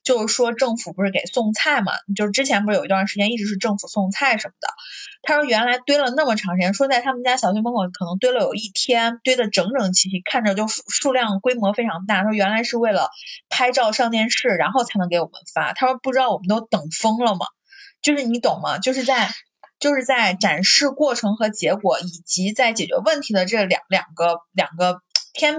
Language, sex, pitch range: Chinese, female, 195-260 Hz